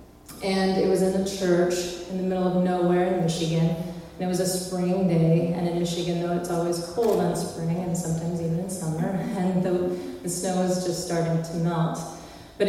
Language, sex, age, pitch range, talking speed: English, female, 30-49, 175-200 Hz, 205 wpm